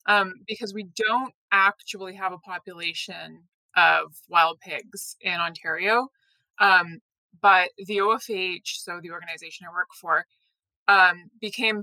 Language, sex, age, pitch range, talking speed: English, female, 20-39, 175-220 Hz, 125 wpm